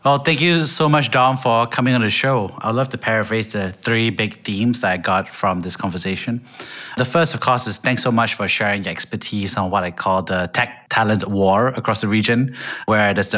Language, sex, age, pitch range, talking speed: English, male, 30-49, 90-110 Hz, 220 wpm